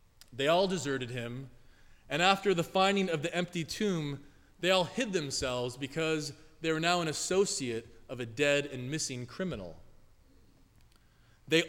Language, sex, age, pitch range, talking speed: English, male, 20-39, 130-190 Hz, 150 wpm